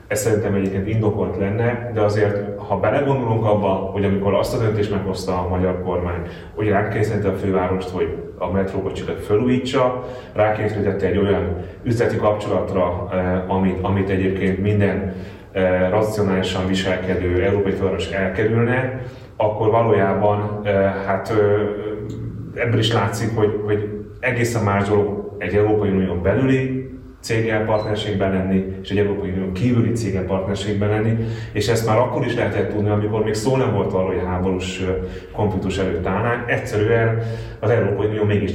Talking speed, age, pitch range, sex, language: 135 wpm, 30-49, 95-110 Hz, male, Hungarian